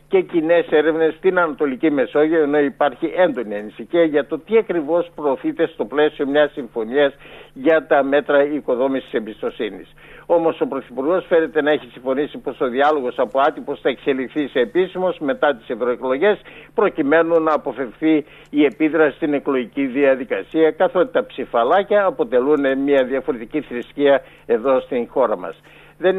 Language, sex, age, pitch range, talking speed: Greek, male, 60-79, 140-170 Hz, 145 wpm